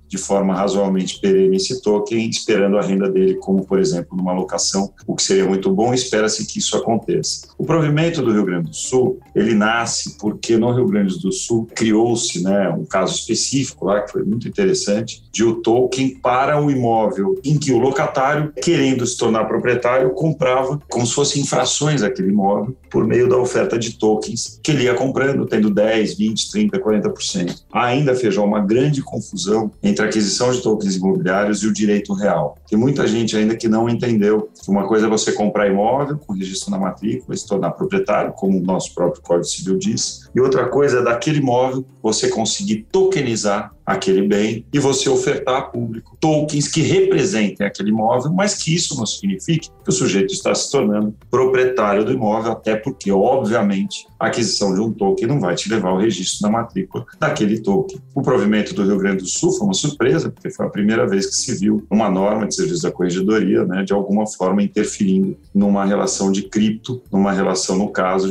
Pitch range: 100-150 Hz